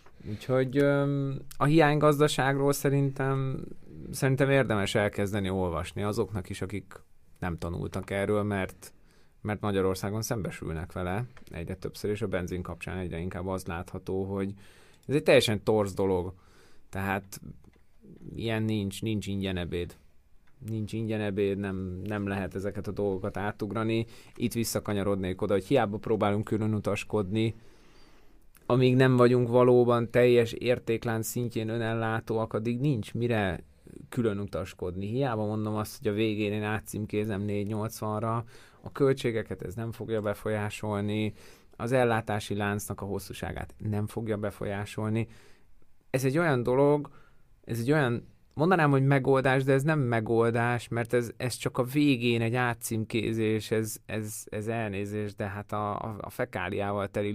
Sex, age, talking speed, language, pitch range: male, 30-49, 130 wpm, Hungarian, 100-120 Hz